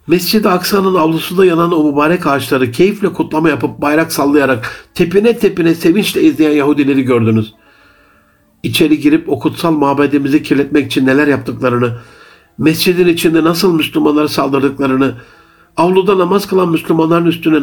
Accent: native